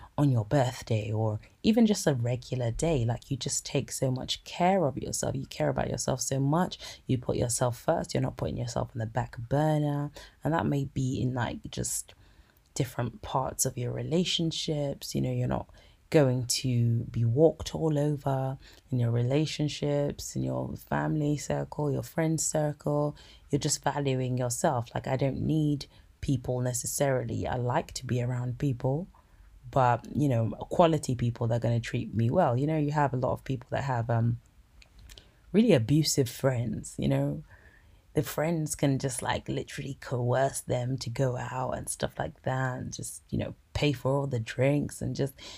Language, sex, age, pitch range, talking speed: English, female, 20-39, 120-145 Hz, 180 wpm